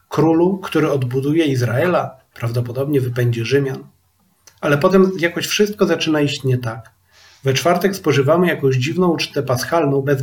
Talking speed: 135 wpm